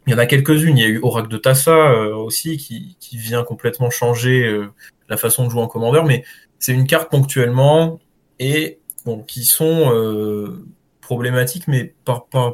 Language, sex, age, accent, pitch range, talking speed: French, male, 20-39, French, 120-150 Hz, 190 wpm